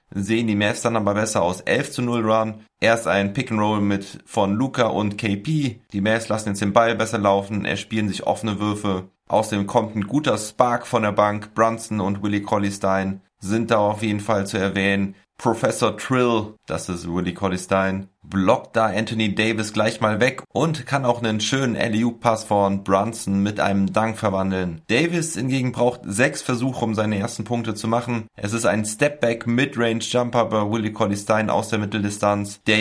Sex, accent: male, German